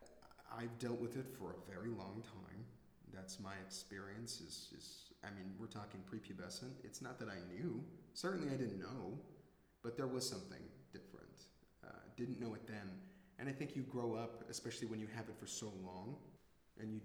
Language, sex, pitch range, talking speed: English, male, 100-125 Hz, 190 wpm